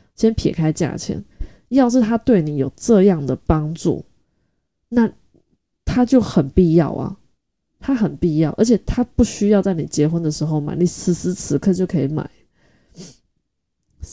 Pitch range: 165-205 Hz